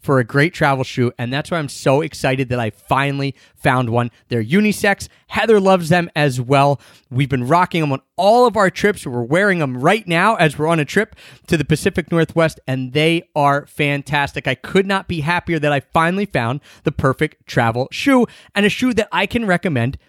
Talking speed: 210 wpm